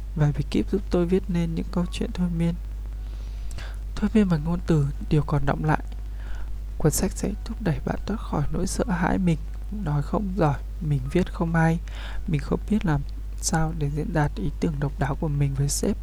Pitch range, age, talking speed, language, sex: 140-175 Hz, 20-39, 210 wpm, Vietnamese, male